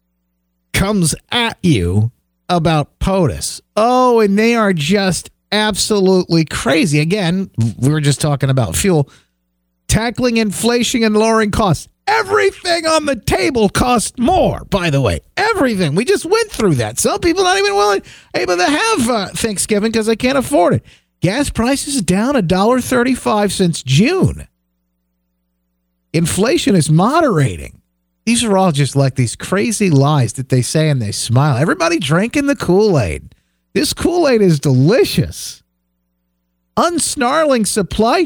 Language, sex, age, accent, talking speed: English, male, 50-69, American, 140 wpm